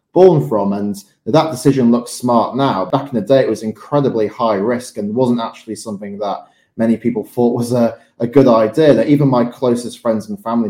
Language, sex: English, male